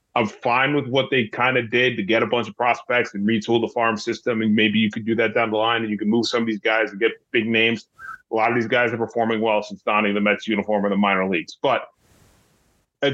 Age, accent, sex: 30-49, American, male